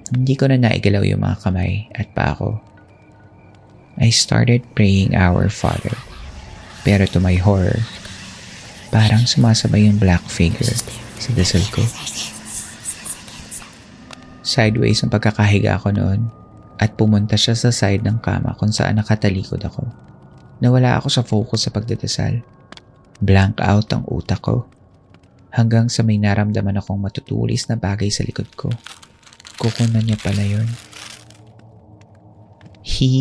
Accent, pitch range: native, 100-120 Hz